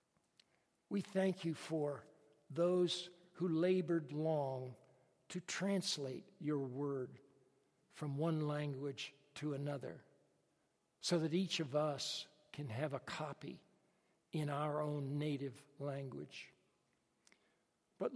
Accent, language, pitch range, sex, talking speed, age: American, English, 145-185 Hz, male, 105 wpm, 60-79